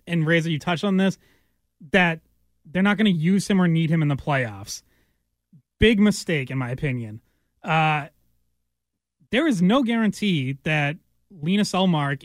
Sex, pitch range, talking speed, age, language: male, 145-195 Hz, 155 wpm, 20-39, English